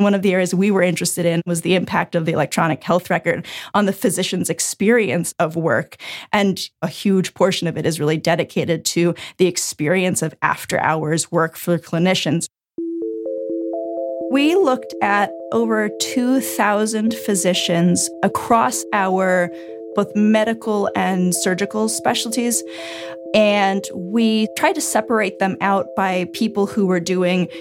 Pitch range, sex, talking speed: 165-200 Hz, female, 140 wpm